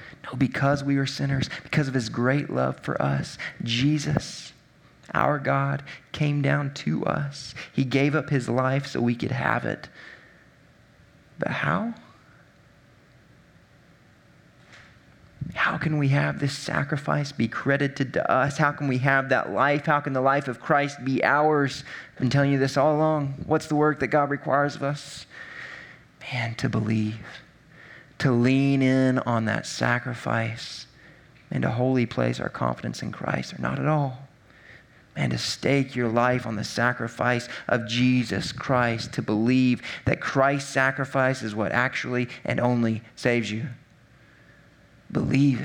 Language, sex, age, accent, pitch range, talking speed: English, male, 30-49, American, 120-145 Hz, 150 wpm